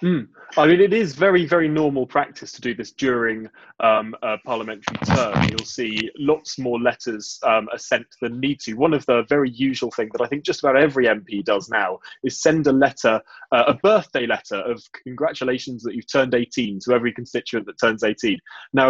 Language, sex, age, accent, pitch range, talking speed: English, male, 20-39, British, 110-150 Hz, 205 wpm